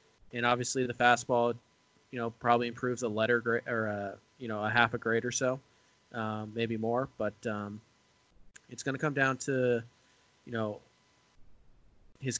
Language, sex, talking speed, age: English, male, 170 wpm, 20-39